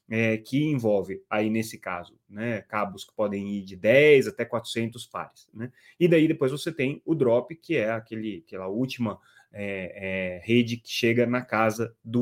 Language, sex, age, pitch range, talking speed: Portuguese, male, 20-39, 105-135 Hz, 180 wpm